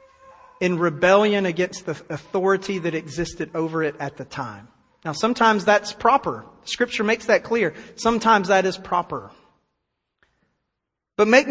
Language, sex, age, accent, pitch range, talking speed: English, male, 40-59, American, 175-235 Hz, 135 wpm